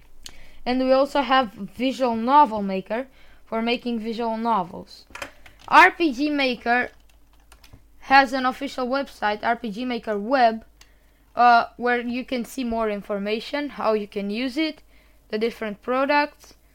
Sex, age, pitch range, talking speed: female, 10-29, 225-285 Hz, 125 wpm